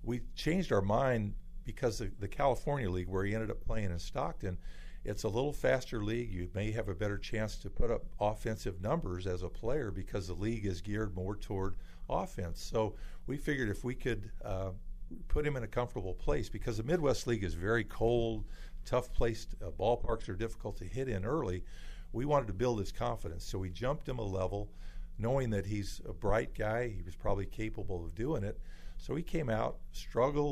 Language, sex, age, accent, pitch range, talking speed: English, male, 50-69, American, 90-115 Hz, 205 wpm